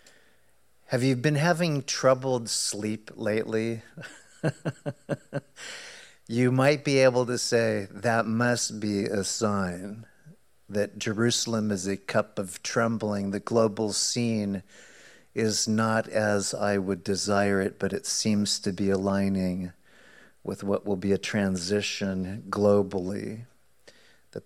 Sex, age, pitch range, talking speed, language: male, 50-69, 100-110 Hz, 120 wpm, English